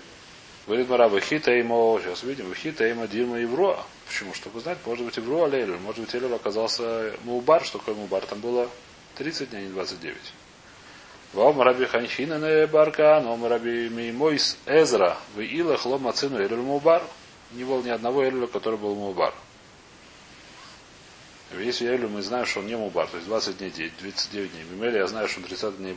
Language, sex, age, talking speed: Russian, male, 30-49, 170 wpm